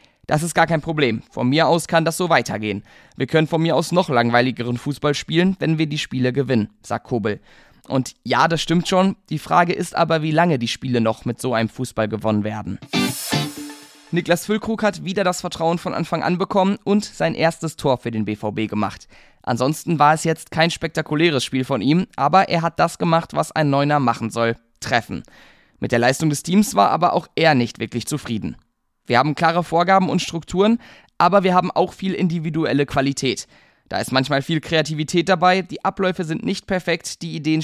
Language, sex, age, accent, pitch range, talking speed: German, male, 20-39, German, 125-170 Hz, 200 wpm